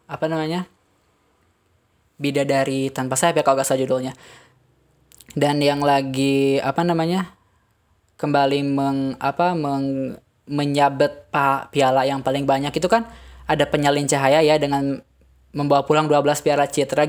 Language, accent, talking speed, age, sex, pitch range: Indonesian, native, 135 wpm, 10-29, female, 135-155 Hz